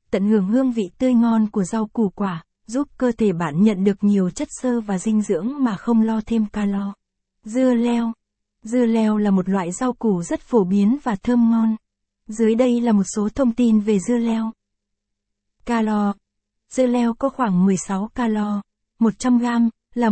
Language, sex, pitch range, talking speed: Vietnamese, female, 205-240 Hz, 180 wpm